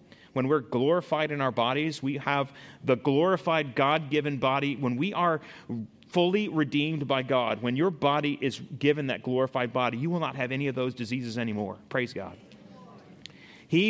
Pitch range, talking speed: 130-175 Hz, 170 wpm